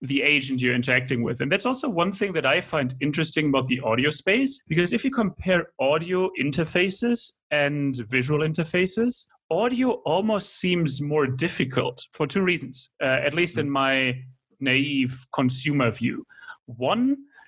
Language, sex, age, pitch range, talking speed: English, male, 30-49, 130-175 Hz, 150 wpm